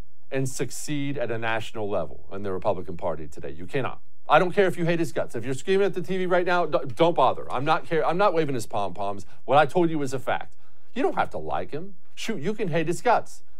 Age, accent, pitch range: 40-59, American, 110-165 Hz